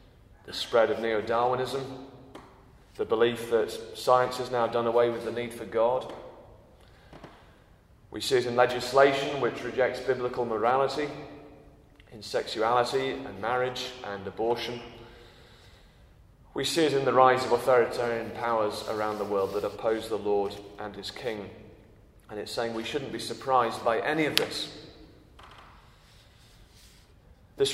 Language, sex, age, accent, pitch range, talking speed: English, male, 30-49, British, 115-140 Hz, 135 wpm